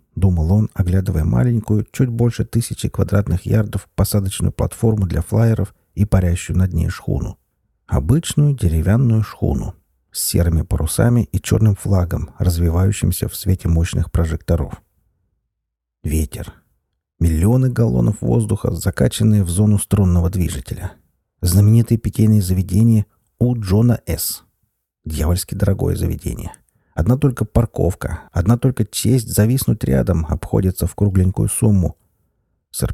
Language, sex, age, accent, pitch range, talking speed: Russian, male, 50-69, native, 85-110 Hz, 115 wpm